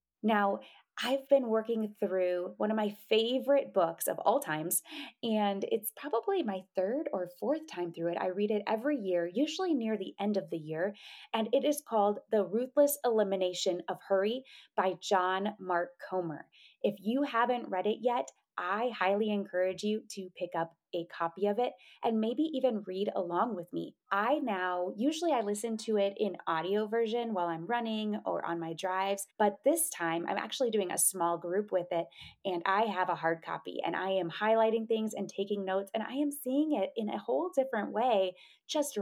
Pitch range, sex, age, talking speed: 185-235 Hz, female, 20-39, 190 wpm